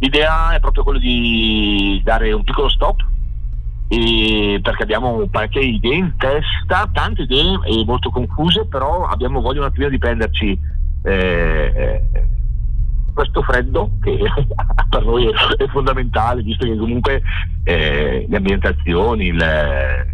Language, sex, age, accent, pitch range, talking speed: Italian, male, 50-69, native, 75-110 Hz, 130 wpm